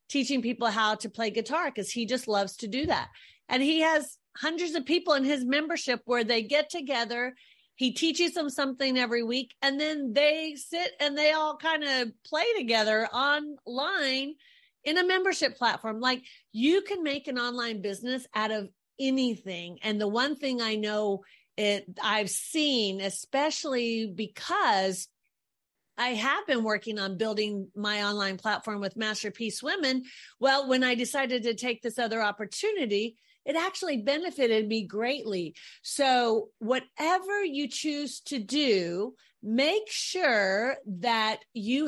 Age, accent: 40-59, American